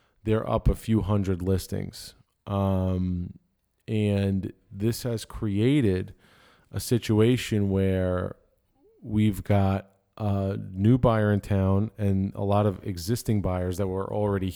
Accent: American